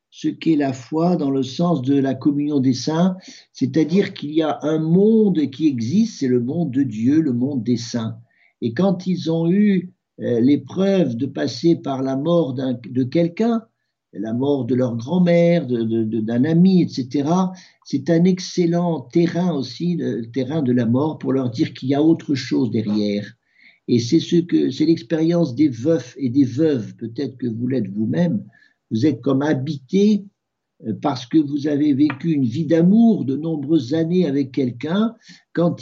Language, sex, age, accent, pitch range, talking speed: French, male, 60-79, French, 130-175 Hz, 180 wpm